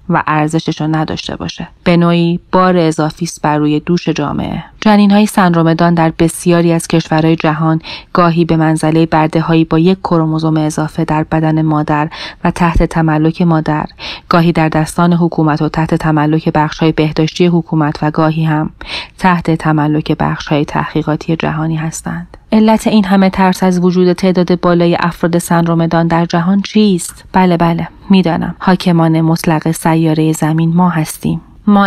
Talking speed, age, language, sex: 145 wpm, 30-49, Persian, female